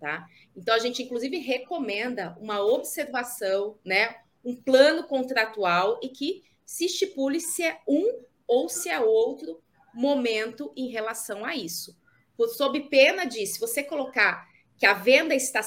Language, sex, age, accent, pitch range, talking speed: Portuguese, female, 30-49, Brazilian, 205-285 Hz, 145 wpm